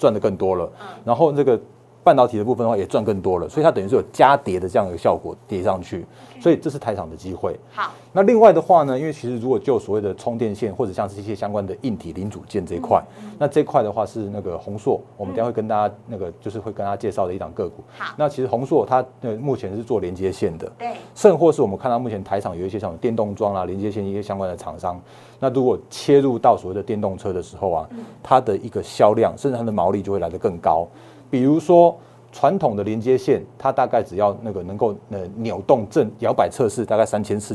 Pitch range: 100-130 Hz